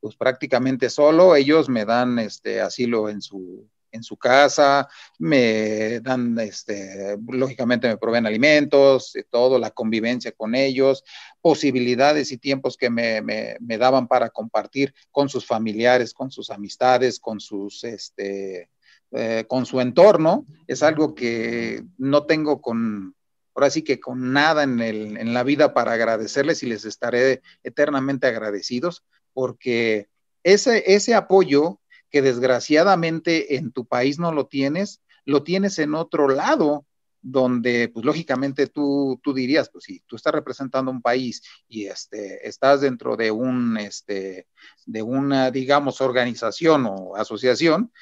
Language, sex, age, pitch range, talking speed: Spanish, male, 40-59, 115-150 Hz, 140 wpm